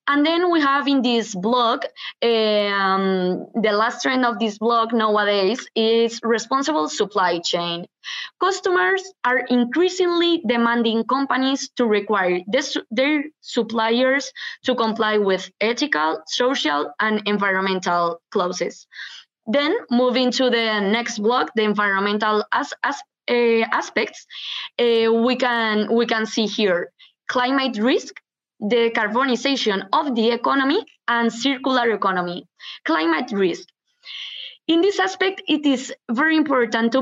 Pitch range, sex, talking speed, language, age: 215-270 Hz, female, 125 wpm, English, 20-39